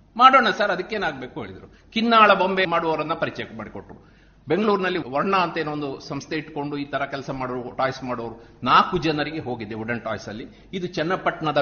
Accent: native